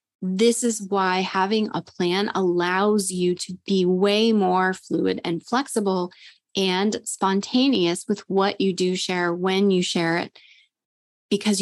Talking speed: 140 wpm